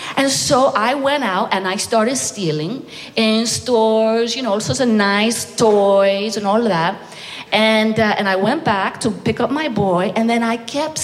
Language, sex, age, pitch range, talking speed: English, female, 40-59, 220-305 Hz, 200 wpm